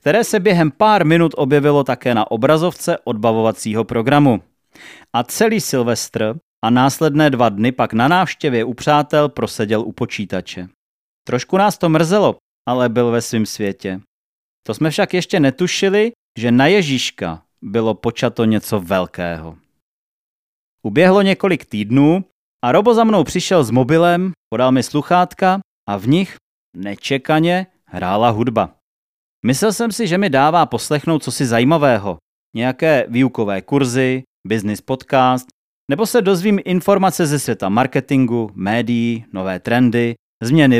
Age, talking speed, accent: 30-49, 135 wpm, native